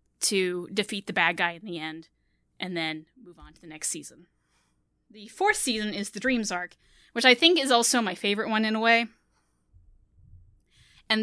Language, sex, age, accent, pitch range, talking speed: English, female, 10-29, American, 190-240 Hz, 185 wpm